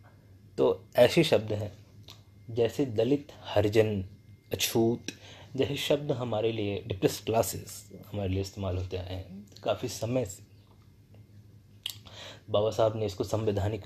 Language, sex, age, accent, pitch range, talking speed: Hindi, male, 20-39, native, 100-115 Hz, 120 wpm